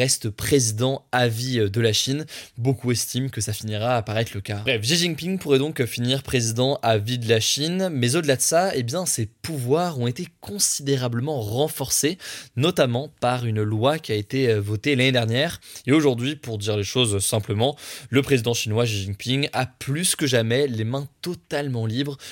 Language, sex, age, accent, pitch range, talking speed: French, male, 20-39, French, 115-140 Hz, 190 wpm